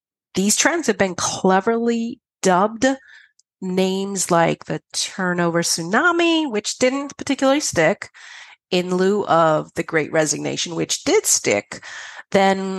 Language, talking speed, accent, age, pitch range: English, 115 wpm, American, 40-59, 165-230 Hz